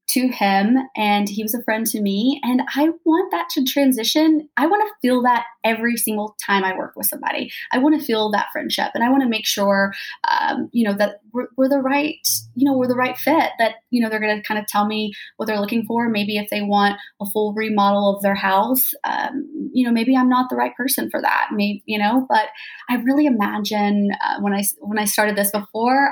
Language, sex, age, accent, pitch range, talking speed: English, female, 20-39, American, 205-270 Hz, 235 wpm